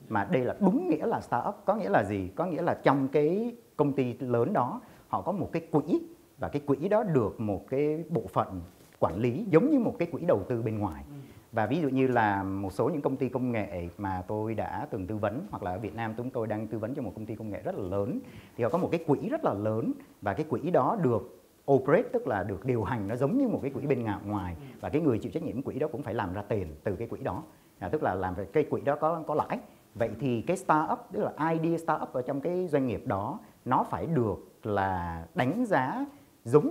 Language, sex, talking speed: Vietnamese, male, 260 wpm